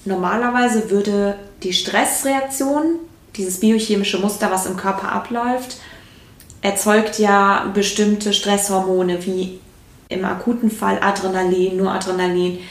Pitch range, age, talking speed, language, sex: 185-210 Hz, 20-39, 105 wpm, German, female